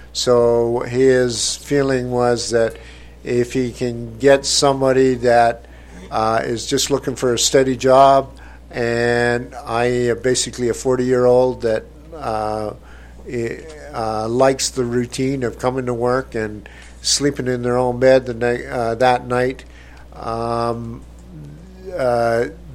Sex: male